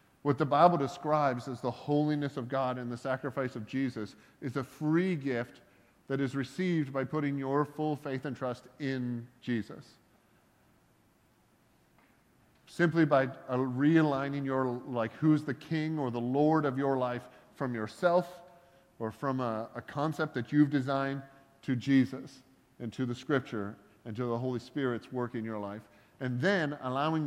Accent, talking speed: American, 160 wpm